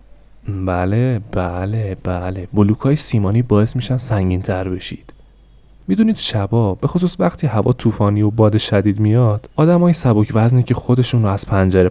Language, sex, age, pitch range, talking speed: Persian, male, 20-39, 95-125 Hz, 145 wpm